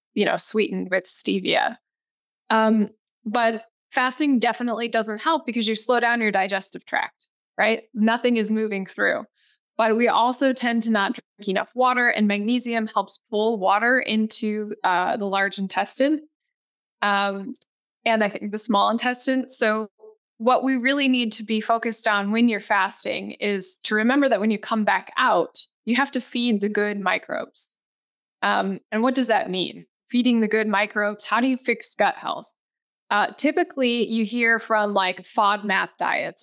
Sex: female